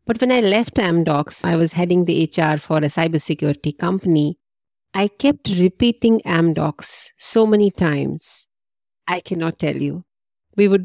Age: 50-69